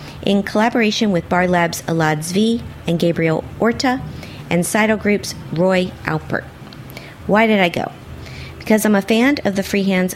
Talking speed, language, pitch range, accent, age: 155 wpm, English, 160-220 Hz, American, 50-69